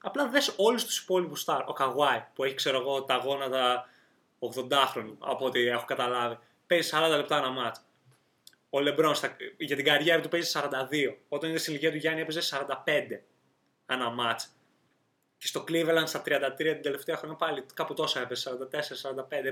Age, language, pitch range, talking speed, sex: 20-39, Greek, 145-190 Hz, 170 wpm, male